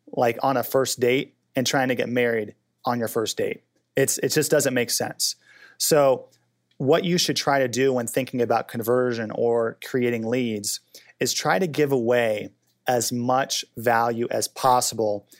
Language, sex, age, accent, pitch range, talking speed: English, male, 30-49, American, 120-140 Hz, 170 wpm